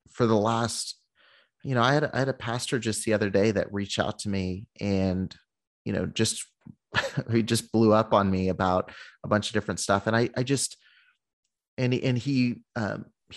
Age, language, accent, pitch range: 30-49, English, American, 100-125 Hz